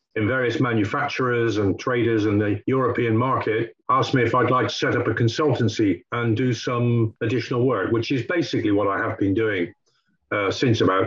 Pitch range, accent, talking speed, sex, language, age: 115-140 Hz, British, 190 wpm, male, English, 50-69